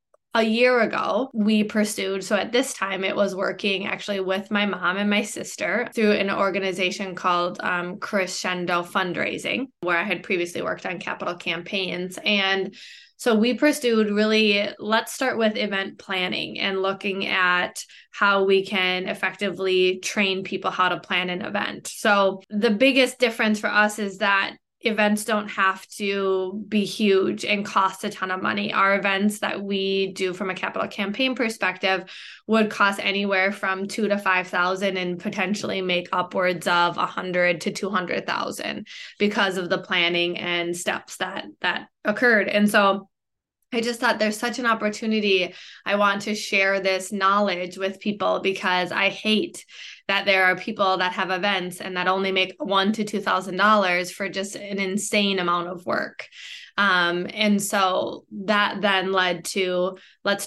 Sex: female